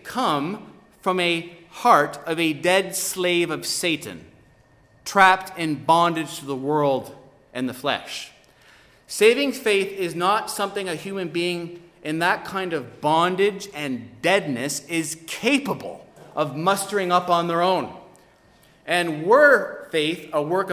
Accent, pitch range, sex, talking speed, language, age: American, 145-195 Hz, male, 135 wpm, English, 30-49